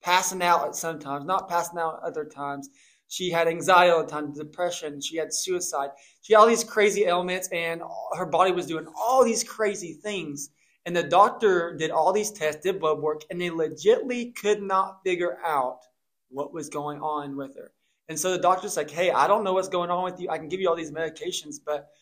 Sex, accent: male, American